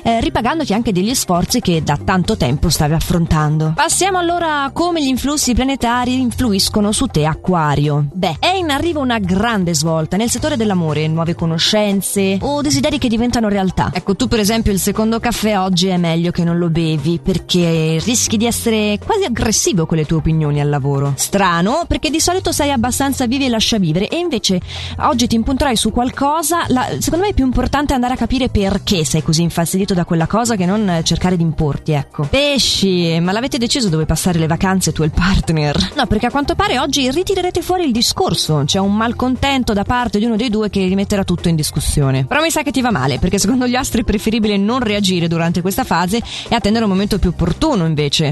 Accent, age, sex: native, 20-39, female